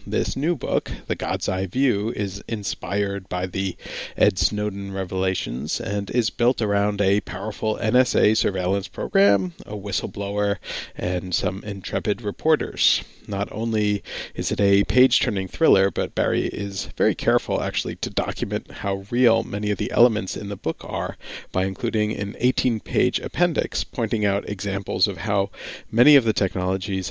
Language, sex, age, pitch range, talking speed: English, male, 40-59, 95-110 Hz, 150 wpm